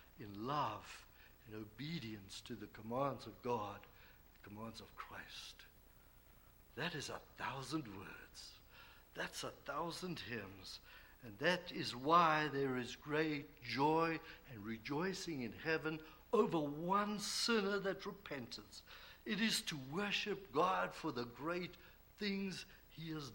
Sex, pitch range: male, 145-205 Hz